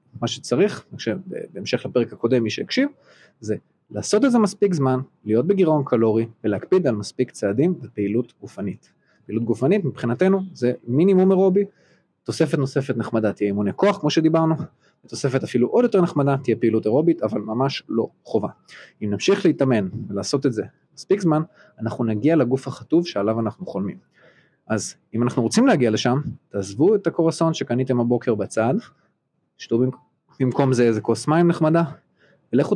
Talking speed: 145 wpm